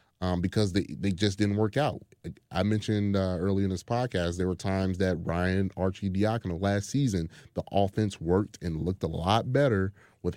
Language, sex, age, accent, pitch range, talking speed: English, male, 30-49, American, 95-115 Hz, 195 wpm